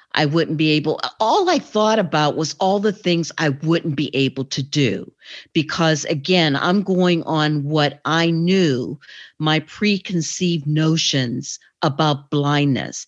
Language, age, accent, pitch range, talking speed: English, 50-69, American, 145-185 Hz, 140 wpm